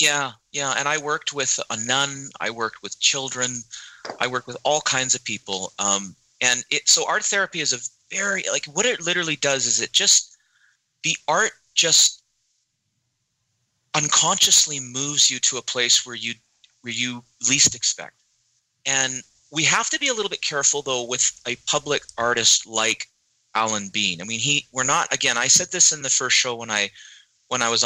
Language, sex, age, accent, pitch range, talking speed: English, male, 30-49, American, 110-140 Hz, 185 wpm